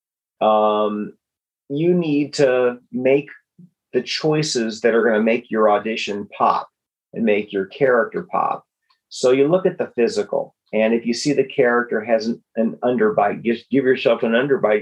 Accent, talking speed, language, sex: American, 170 wpm, English, male